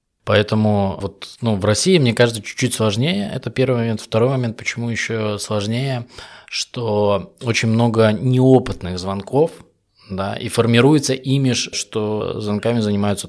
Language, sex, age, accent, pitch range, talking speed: Russian, male, 20-39, native, 100-120 Hz, 125 wpm